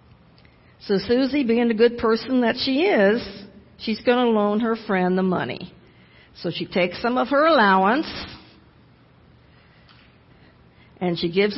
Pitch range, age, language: 180-240 Hz, 50-69, English